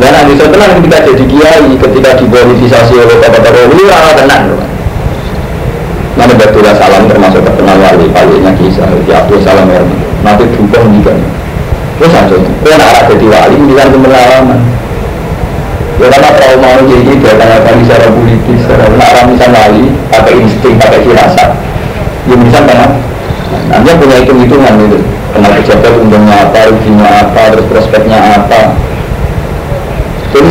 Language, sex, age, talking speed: Indonesian, male, 50-69, 140 wpm